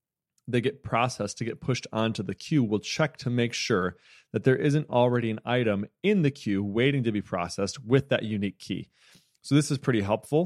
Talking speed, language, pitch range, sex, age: 205 wpm, English, 105-125 Hz, male, 30-49